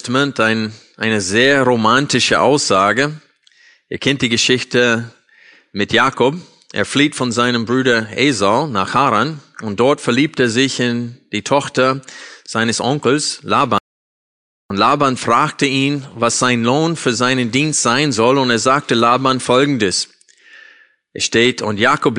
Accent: German